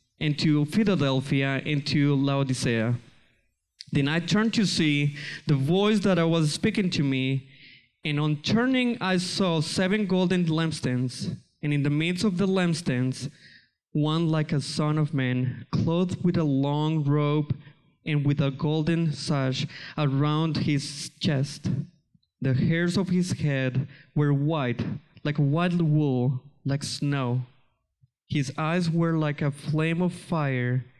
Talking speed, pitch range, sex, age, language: 140 wpm, 130-165 Hz, male, 20-39, English